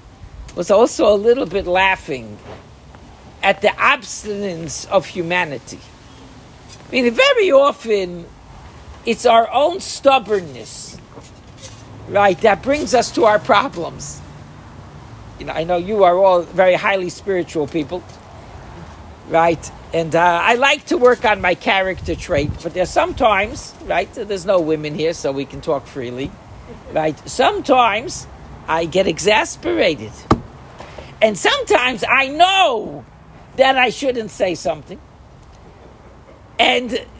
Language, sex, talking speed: English, male, 125 wpm